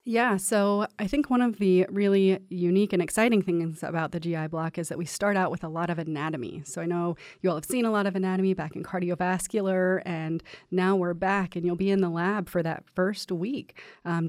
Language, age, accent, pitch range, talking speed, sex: English, 30-49, American, 160-190 Hz, 230 wpm, female